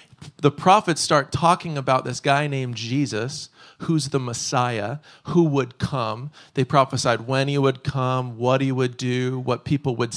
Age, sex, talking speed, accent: 40-59, male, 165 wpm, American